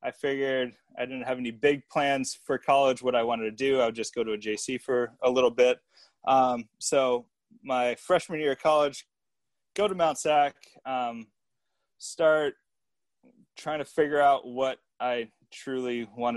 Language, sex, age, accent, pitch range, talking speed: English, male, 20-39, American, 120-170 Hz, 170 wpm